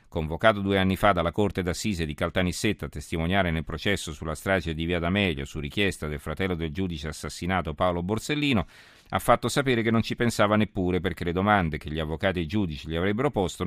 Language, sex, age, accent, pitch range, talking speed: Italian, male, 50-69, native, 80-105 Hz, 205 wpm